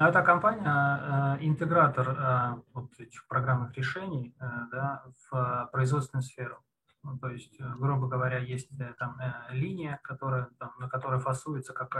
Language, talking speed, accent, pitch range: Russian, 110 wpm, native, 130-150 Hz